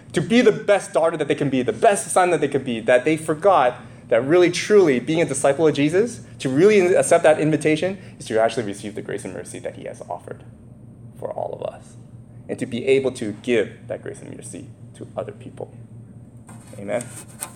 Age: 20-39